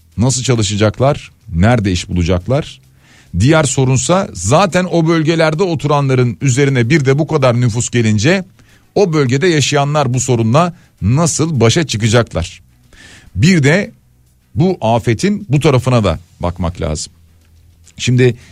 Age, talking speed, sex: 50-69, 115 wpm, male